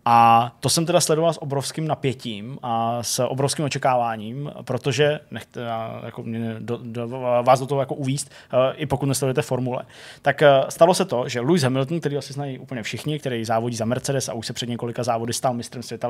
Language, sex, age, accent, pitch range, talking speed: Czech, male, 20-39, native, 115-140 Hz, 205 wpm